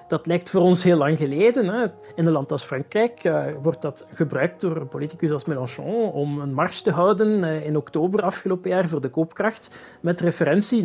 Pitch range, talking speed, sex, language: 150-190 Hz, 185 wpm, male, Dutch